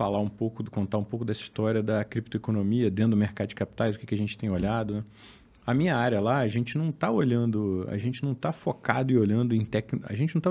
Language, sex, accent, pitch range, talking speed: Portuguese, male, Brazilian, 110-140 Hz, 250 wpm